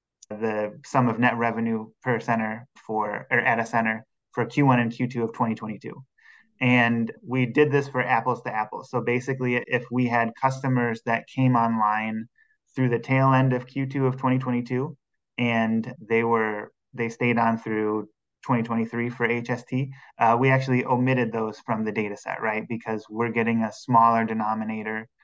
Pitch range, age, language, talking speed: 110-125 Hz, 20-39, English, 165 wpm